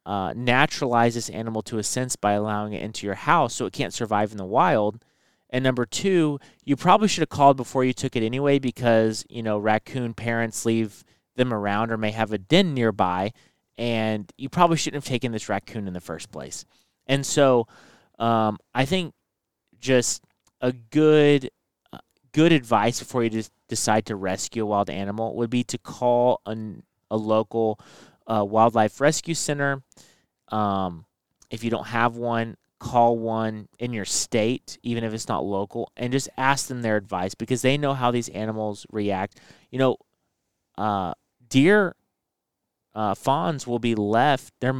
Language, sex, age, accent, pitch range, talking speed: English, male, 30-49, American, 110-130 Hz, 170 wpm